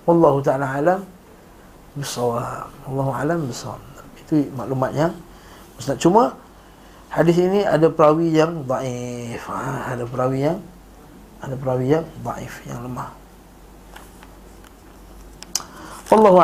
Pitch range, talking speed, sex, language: 135-165 Hz, 100 wpm, male, Malay